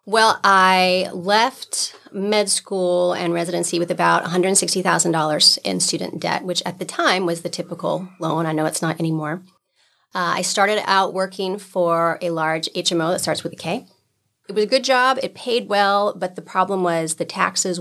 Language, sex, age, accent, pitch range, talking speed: English, female, 30-49, American, 170-195 Hz, 180 wpm